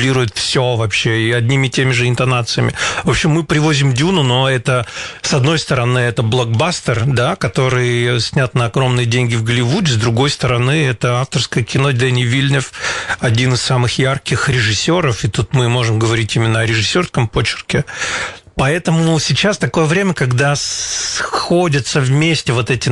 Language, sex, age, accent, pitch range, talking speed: Russian, male, 40-59, native, 120-145 Hz, 155 wpm